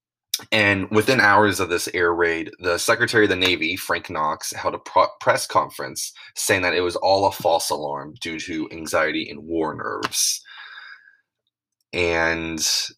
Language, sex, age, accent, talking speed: English, male, 20-39, American, 155 wpm